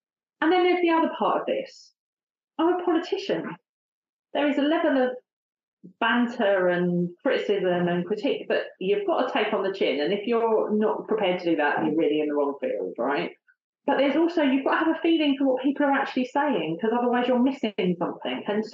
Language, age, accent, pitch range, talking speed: English, 30-49, British, 185-275 Hz, 210 wpm